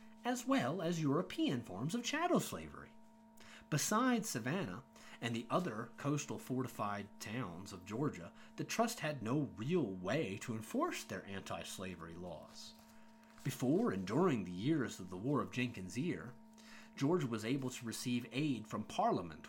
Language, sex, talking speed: English, male, 150 wpm